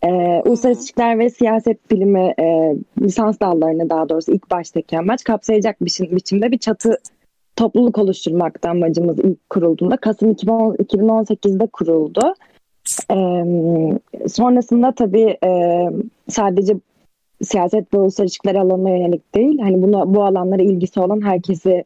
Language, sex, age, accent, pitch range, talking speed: Turkish, female, 20-39, native, 170-225 Hz, 125 wpm